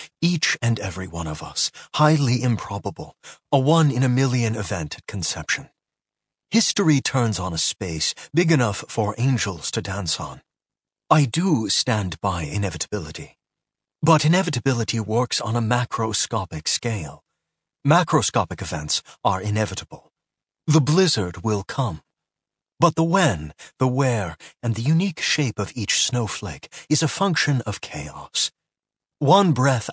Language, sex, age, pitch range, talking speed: English, male, 30-49, 105-150 Hz, 130 wpm